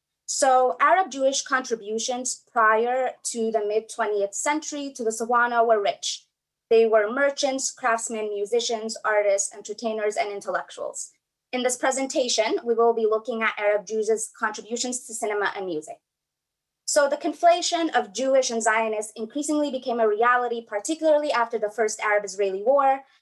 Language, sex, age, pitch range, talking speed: English, female, 20-39, 210-265 Hz, 145 wpm